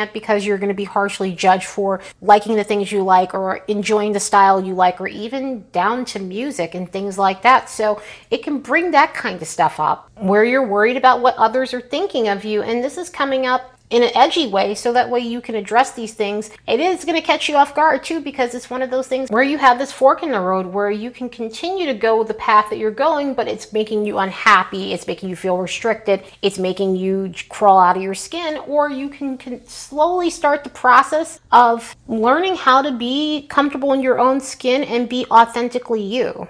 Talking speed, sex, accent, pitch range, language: 225 wpm, female, American, 200-260 Hz, English